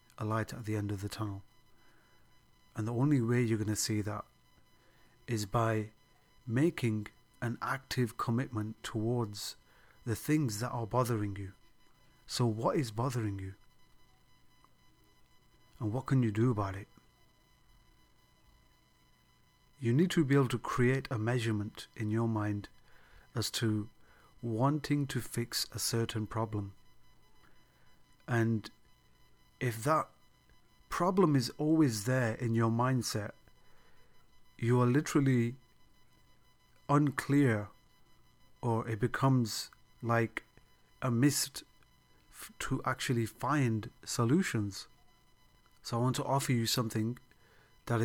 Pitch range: 110-130 Hz